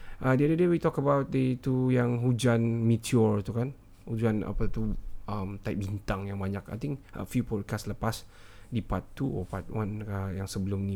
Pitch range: 100-120 Hz